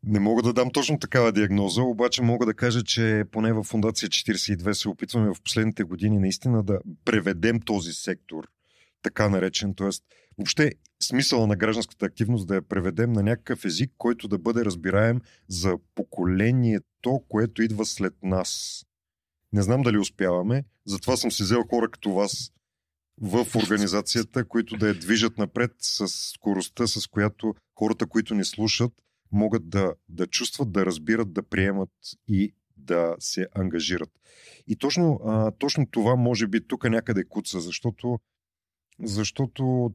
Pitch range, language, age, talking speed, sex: 95-120 Hz, Bulgarian, 40-59, 150 wpm, male